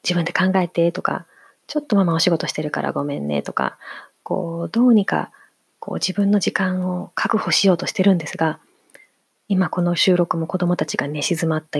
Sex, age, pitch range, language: female, 30-49, 160-185 Hz, Japanese